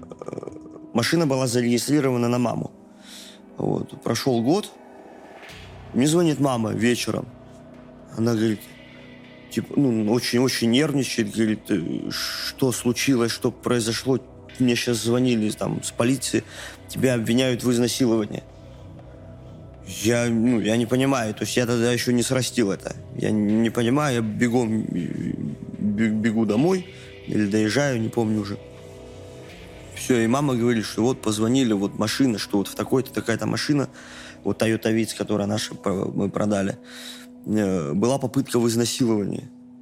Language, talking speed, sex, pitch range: Russian, 125 wpm, male, 110-130 Hz